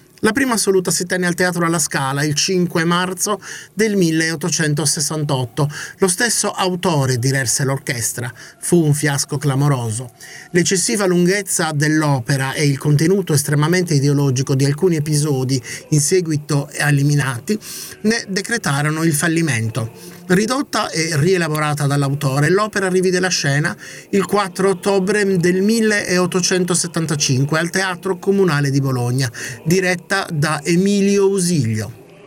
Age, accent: 30-49, native